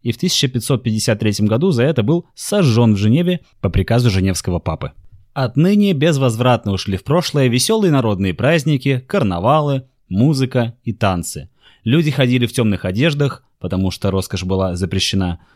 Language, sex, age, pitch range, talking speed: Russian, male, 20-39, 100-130 Hz, 140 wpm